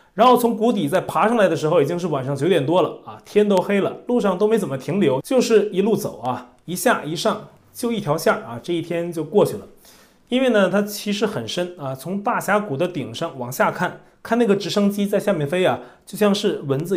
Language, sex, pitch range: Chinese, male, 150-205 Hz